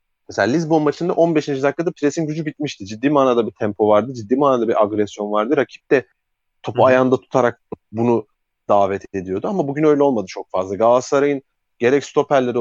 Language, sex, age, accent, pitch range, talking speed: Turkish, male, 30-49, native, 105-135 Hz, 165 wpm